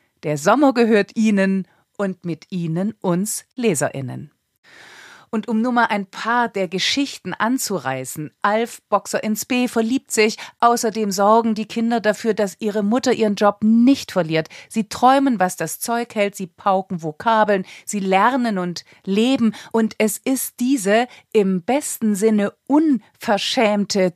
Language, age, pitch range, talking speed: German, 40-59, 185-235 Hz, 140 wpm